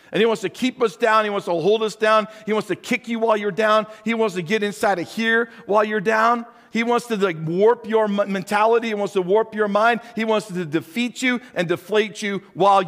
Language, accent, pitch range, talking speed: English, American, 190-240 Hz, 240 wpm